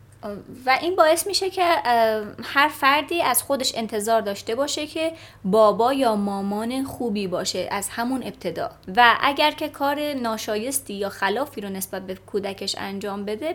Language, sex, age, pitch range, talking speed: Persian, female, 20-39, 200-275 Hz, 150 wpm